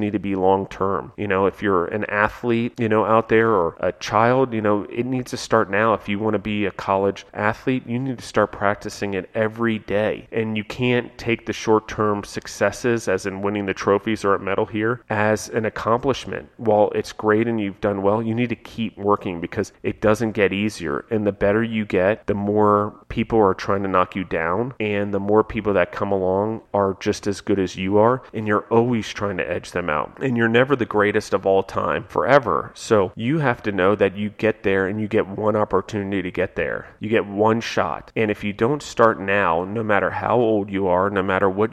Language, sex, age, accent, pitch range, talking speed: English, male, 30-49, American, 100-110 Hz, 225 wpm